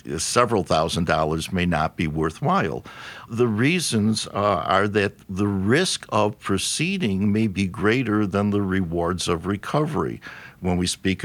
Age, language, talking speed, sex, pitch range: 60-79, English, 145 wpm, male, 90-115 Hz